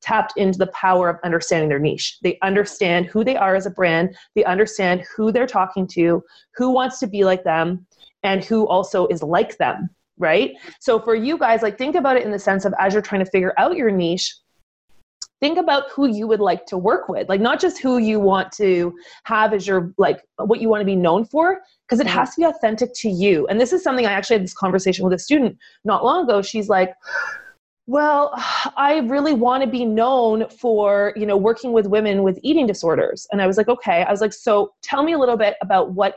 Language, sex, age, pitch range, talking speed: English, female, 30-49, 185-245 Hz, 230 wpm